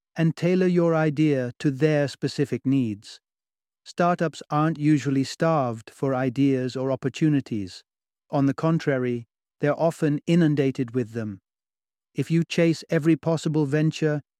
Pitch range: 125-155 Hz